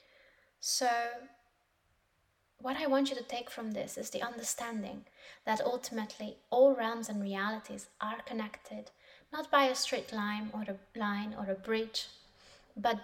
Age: 20-39